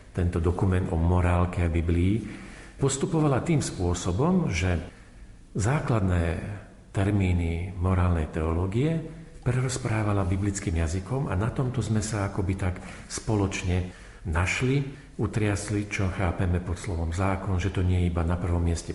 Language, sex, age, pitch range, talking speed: Slovak, male, 50-69, 90-110 Hz, 125 wpm